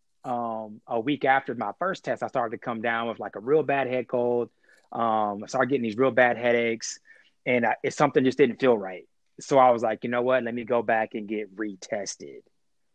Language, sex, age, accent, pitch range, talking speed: English, male, 30-49, American, 110-125 Hz, 220 wpm